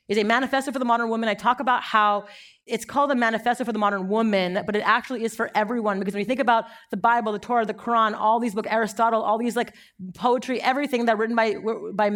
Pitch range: 195-245 Hz